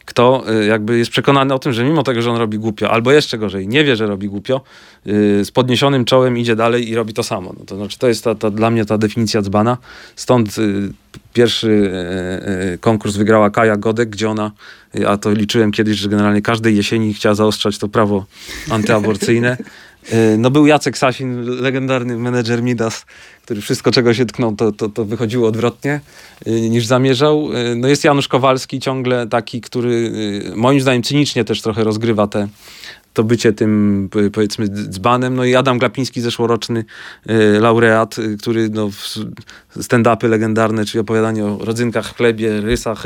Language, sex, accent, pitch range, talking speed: Polish, male, native, 110-125 Hz, 175 wpm